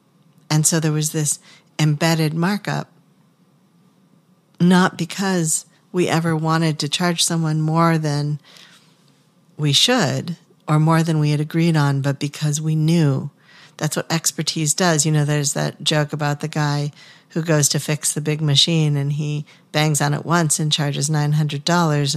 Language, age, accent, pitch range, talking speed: English, 50-69, American, 145-170 Hz, 155 wpm